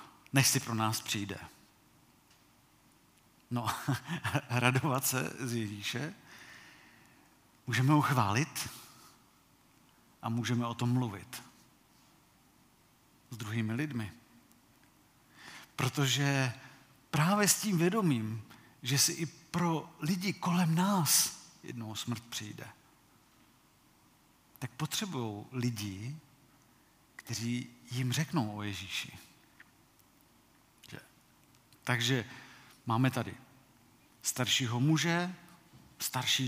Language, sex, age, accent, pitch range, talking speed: Czech, male, 50-69, native, 120-145 Hz, 80 wpm